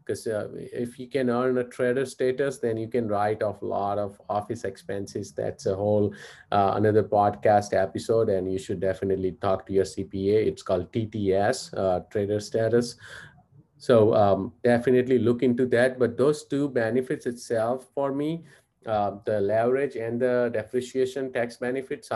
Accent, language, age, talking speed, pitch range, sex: Indian, English, 30-49, 165 wpm, 95-125 Hz, male